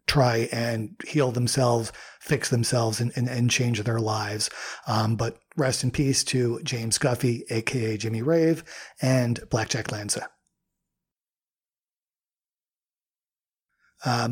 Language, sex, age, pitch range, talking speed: English, male, 40-59, 135-190 Hz, 115 wpm